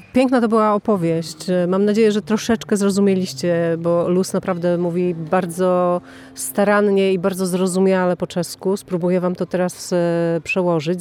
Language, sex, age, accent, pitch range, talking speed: Polish, female, 40-59, native, 190-235 Hz, 135 wpm